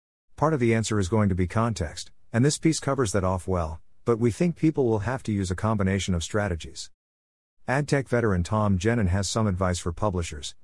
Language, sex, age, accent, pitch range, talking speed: English, male, 50-69, American, 90-120 Hz, 215 wpm